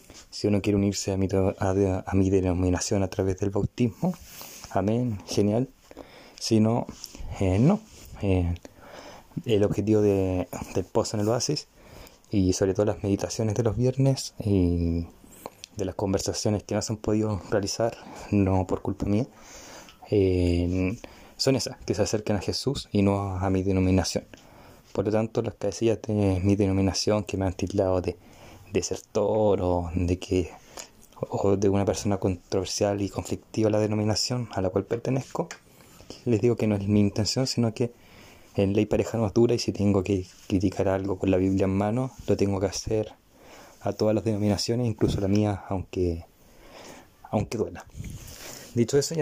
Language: Spanish